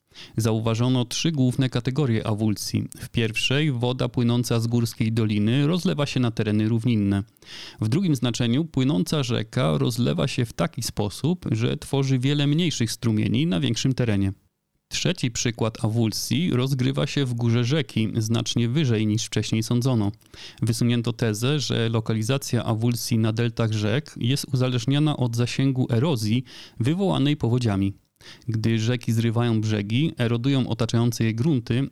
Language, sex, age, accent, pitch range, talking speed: Polish, male, 30-49, native, 110-135 Hz, 135 wpm